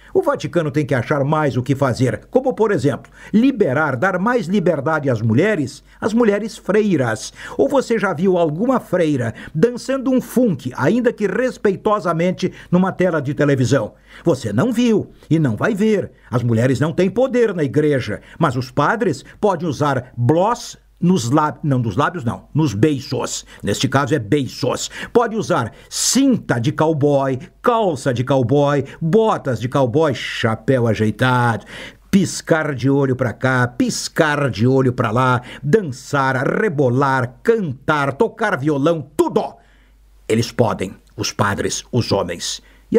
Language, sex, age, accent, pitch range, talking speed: Portuguese, male, 60-79, Brazilian, 130-210 Hz, 145 wpm